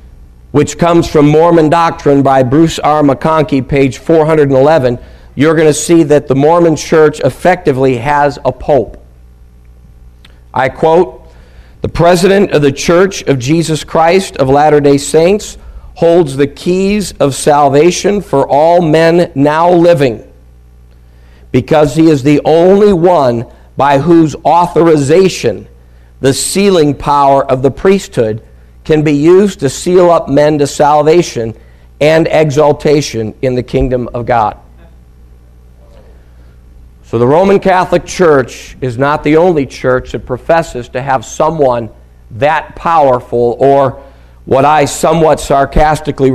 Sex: male